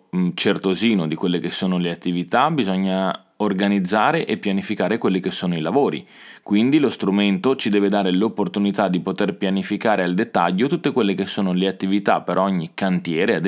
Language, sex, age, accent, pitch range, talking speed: Italian, male, 20-39, native, 95-125 Hz, 175 wpm